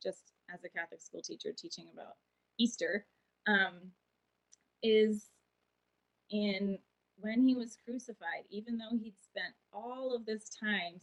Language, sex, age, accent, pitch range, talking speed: English, female, 20-39, American, 190-230 Hz, 130 wpm